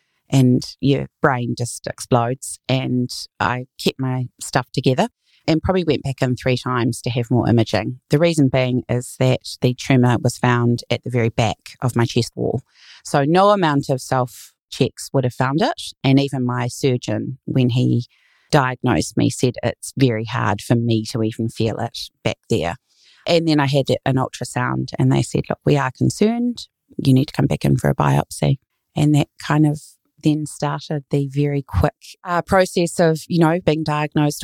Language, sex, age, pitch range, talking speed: English, female, 30-49, 125-150 Hz, 185 wpm